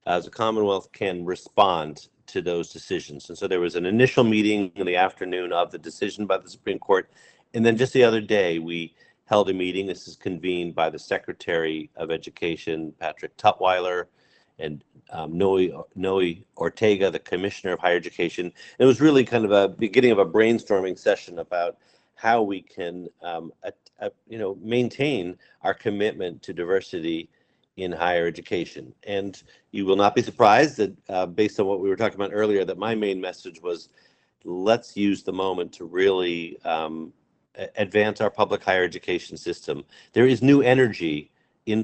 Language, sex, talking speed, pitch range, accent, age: English, male, 175 wpm, 90-115 Hz, American, 50-69